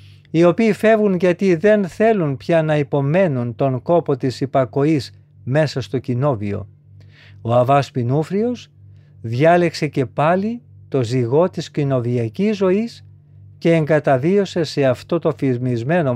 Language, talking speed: Greek, 120 wpm